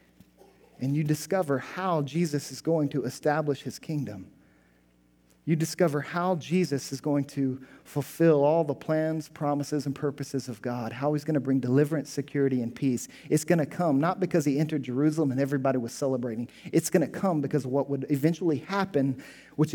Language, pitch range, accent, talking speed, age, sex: English, 130-165 Hz, American, 180 wpm, 40-59, male